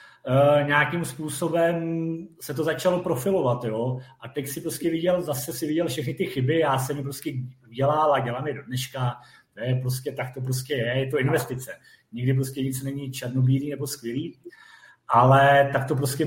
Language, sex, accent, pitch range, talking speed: Czech, male, native, 140-170 Hz, 180 wpm